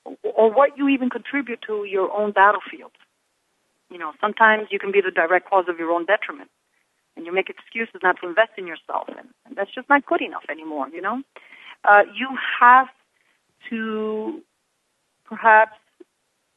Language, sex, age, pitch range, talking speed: English, female, 40-59, 180-230 Hz, 165 wpm